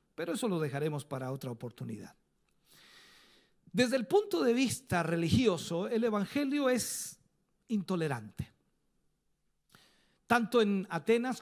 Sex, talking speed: male, 105 wpm